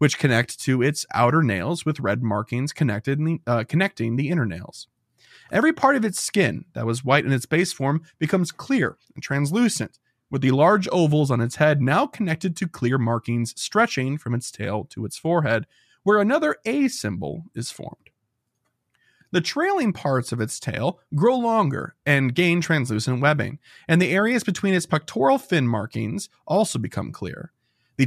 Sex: male